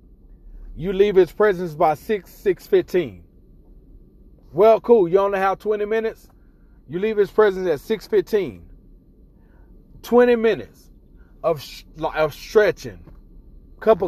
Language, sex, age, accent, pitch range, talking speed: English, male, 30-49, American, 135-195 Hz, 120 wpm